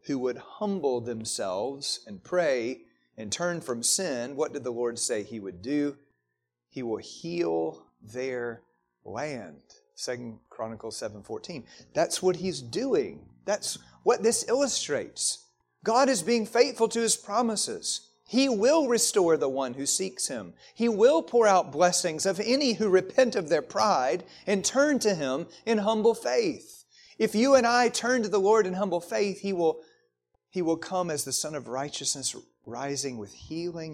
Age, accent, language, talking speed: 40-59, American, English, 165 wpm